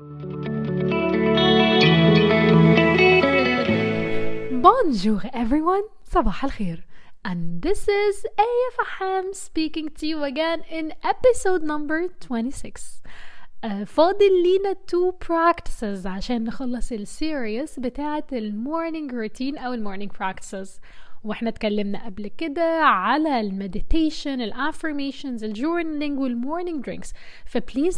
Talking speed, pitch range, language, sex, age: 95 wpm, 225-330 Hz, Arabic, female, 20-39